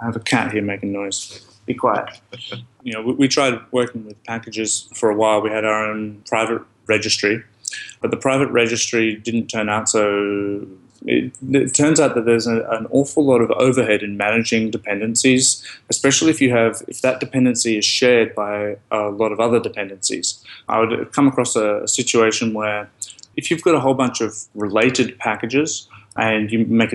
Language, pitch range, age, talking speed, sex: English, 105-120 Hz, 20-39, 185 wpm, male